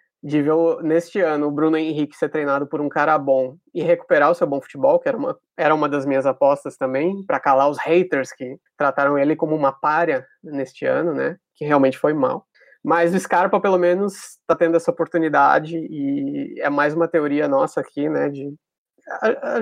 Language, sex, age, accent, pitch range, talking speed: Portuguese, male, 20-39, Brazilian, 145-175 Hz, 200 wpm